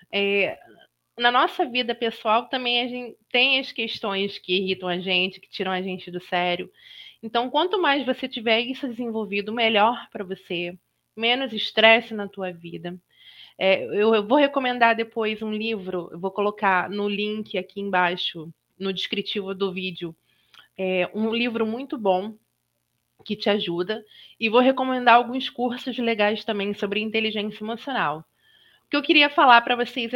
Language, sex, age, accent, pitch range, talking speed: Portuguese, female, 20-39, Brazilian, 190-240 Hz, 155 wpm